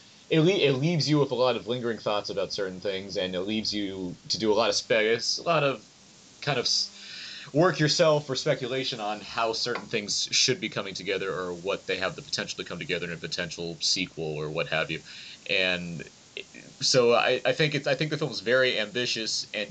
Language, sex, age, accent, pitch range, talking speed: English, male, 30-49, American, 100-145 Hz, 225 wpm